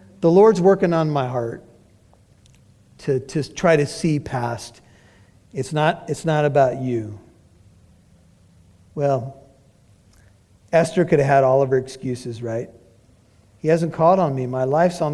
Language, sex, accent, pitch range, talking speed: English, male, American, 115-165 Hz, 145 wpm